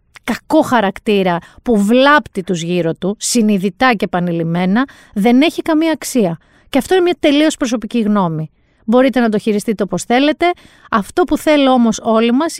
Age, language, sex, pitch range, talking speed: 30-49, Greek, female, 210-275 Hz, 155 wpm